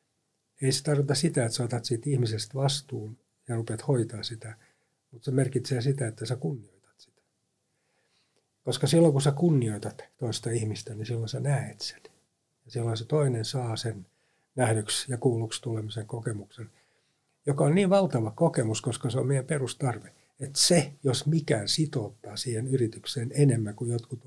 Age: 60-79